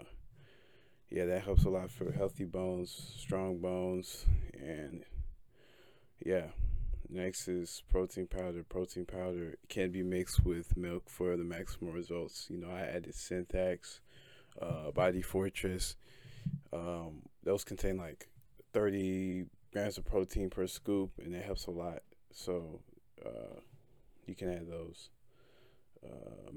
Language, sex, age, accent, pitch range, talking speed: English, male, 20-39, American, 85-95 Hz, 130 wpm